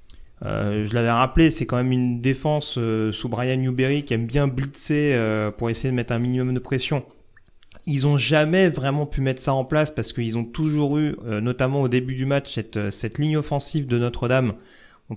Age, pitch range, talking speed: 30-49, 115-150 Hz, 210 wpm